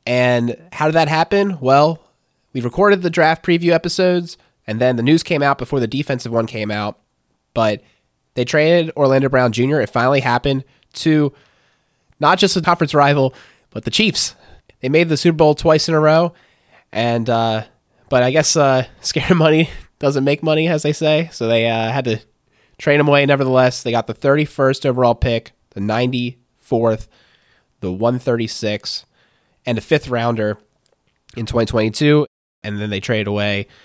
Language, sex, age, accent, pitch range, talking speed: English, male, 20-39, American, 110-145 Hz, 170 wpm